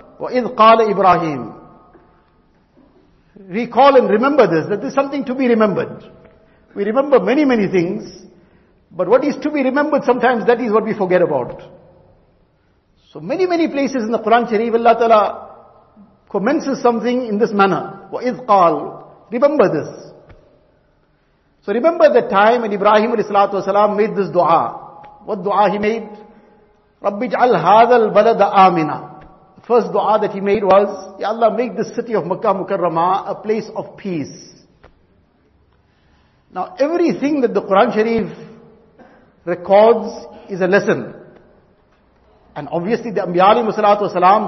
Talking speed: 140 wpm